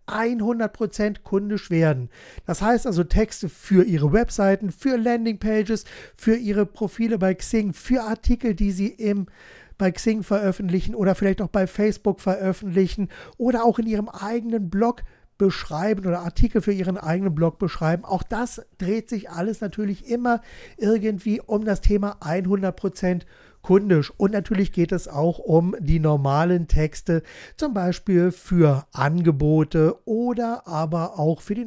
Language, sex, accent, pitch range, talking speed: German, male, German, 175-225 Hz, 140 wpm